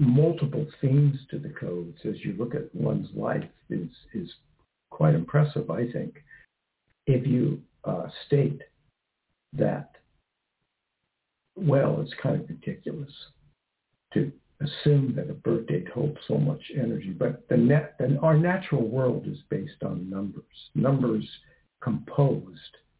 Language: English